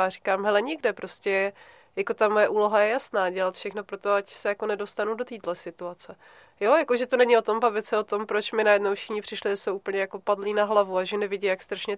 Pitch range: 200-230 Hz